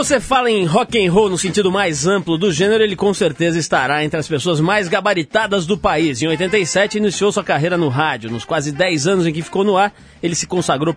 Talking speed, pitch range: 235 wpm, 150-195 Hz